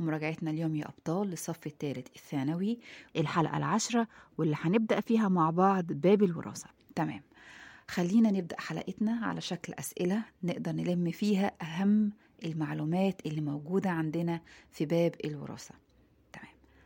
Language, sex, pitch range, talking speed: Arabic, female, 160-220 Hz, 125 wpm